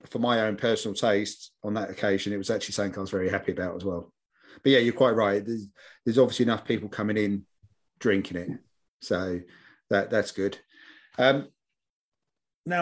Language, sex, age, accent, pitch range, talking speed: English, male, 30-49, British, 100-120 Hz, 185 wpm